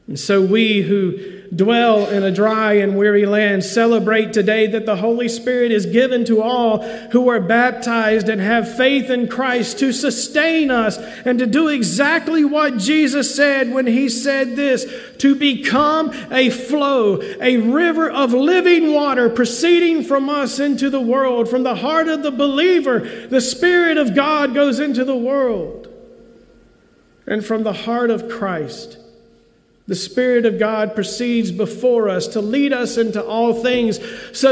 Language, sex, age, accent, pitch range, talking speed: English, male, 50-69, American, 205-270 Hz, 160 wpm